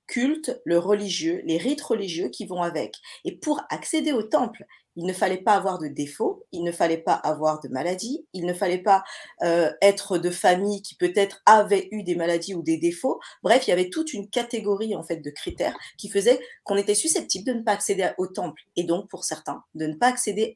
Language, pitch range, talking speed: French, 185-250 Hz, 220 wpm